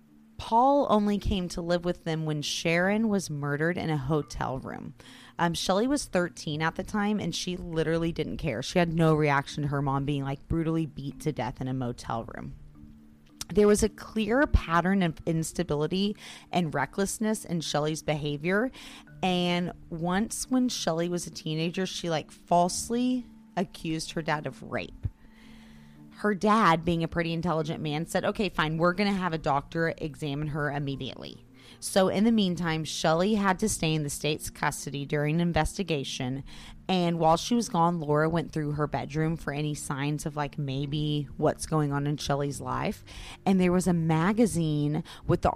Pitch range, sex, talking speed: 145-180 Hz, female, 175 wpm